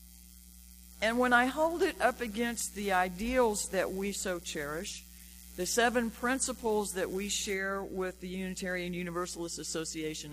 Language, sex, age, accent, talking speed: English, female, 50-69, American, 140 wpm